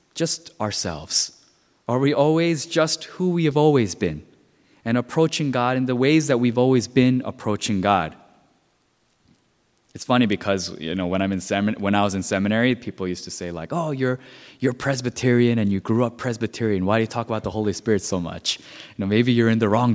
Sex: male